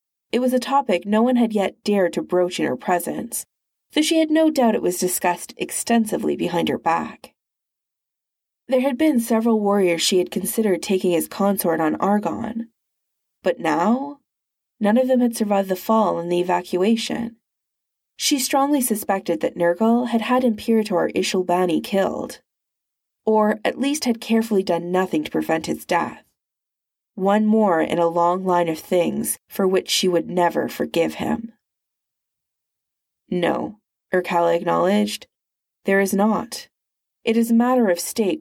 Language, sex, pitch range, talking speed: English, female, 175-230 Hz, 155 wpm